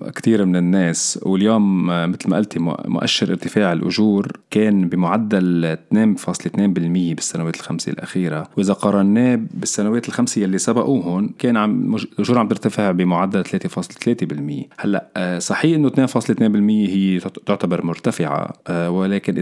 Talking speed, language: 115 wpm, Arabic